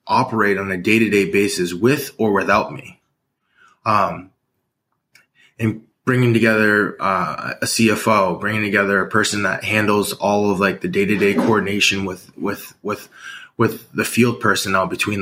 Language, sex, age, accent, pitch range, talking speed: English, male, 20-39, American, 95-110 Hz, 140 wpm